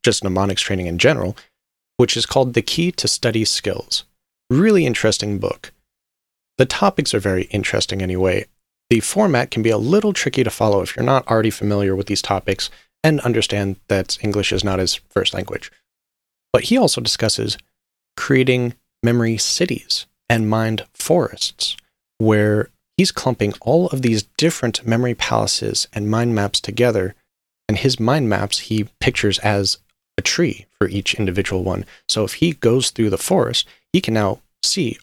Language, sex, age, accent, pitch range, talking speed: English, male, 30-49, American, 100-130 Hz, 165 wpm